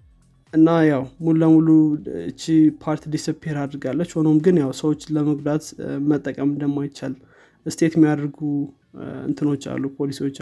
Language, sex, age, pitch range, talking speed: Amharic, male, 20-39, 140-160 Hz, 115 wpm